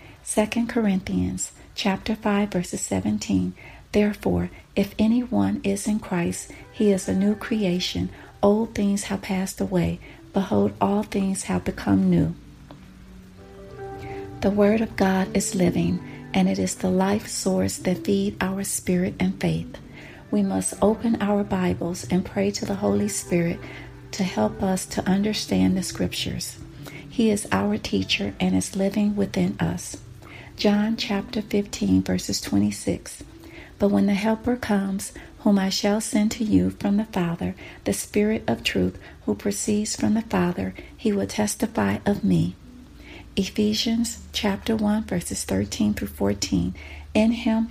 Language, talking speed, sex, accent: English, 145 wpm, female, American